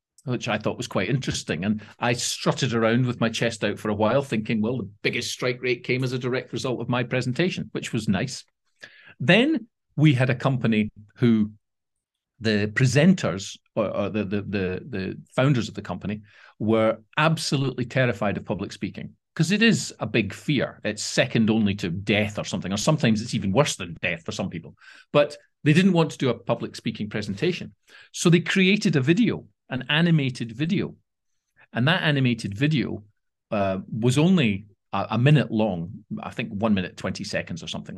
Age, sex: 40-59, male